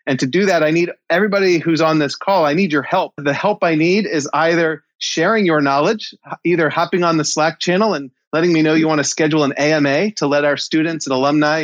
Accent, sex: American, male